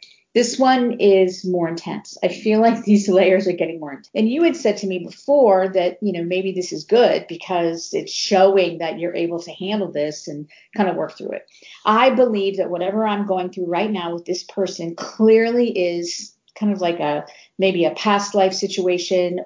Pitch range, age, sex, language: 180-220 Hz, 40-59, female, English